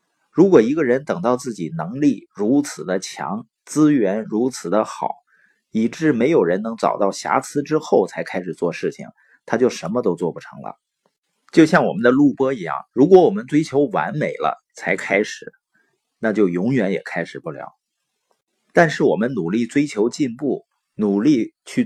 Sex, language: male, Chinese